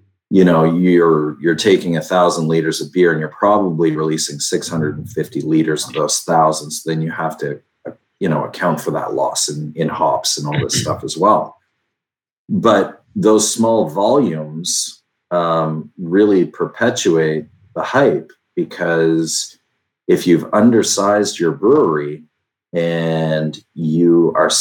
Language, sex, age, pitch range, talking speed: English, male, 40-59, 80-95 Hz, 135 wpm